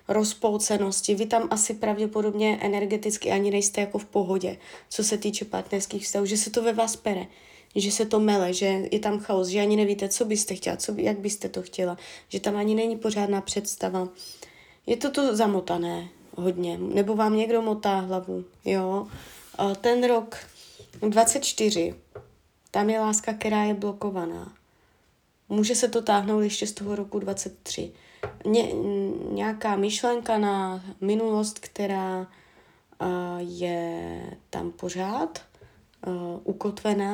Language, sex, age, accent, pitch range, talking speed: Czech, female, 20-39, native, 185-220 Hz, 135 wpm